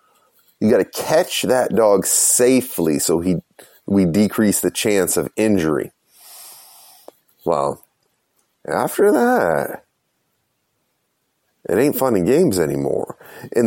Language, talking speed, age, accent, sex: English, 110 wpm, 30-49, American, male